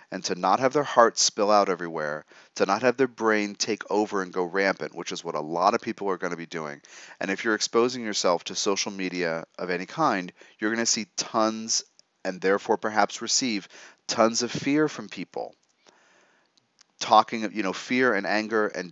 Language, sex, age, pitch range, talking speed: English, male, 30-49, 95-115 Hz, 200 wpm